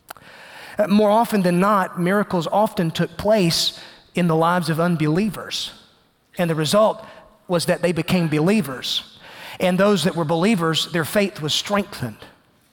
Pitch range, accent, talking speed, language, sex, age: 155-205 Hz, American, 140 wpm, English, male, 40-59